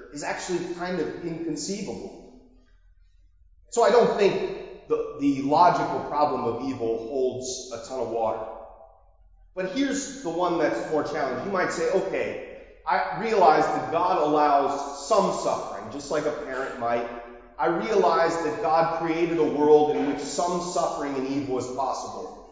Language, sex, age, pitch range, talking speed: English, male, 30-49, 130-190 Hz, 155 wpm